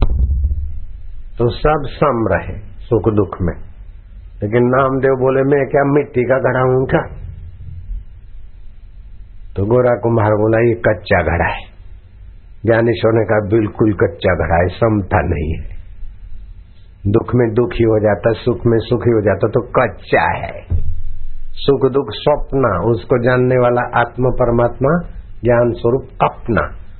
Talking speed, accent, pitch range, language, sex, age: 130 wpm, native, 95-140 Hz, Hindi, male, 60-79